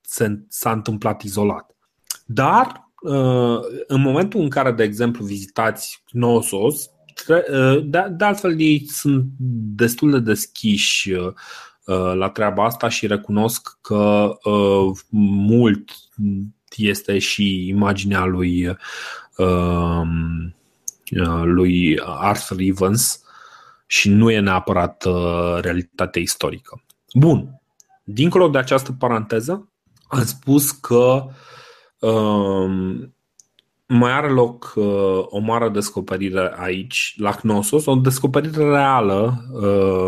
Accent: native